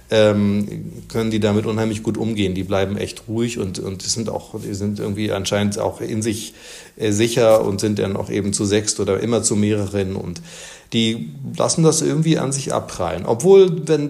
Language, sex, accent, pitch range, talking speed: German, male, German, 100-115 Hz, 185 wpm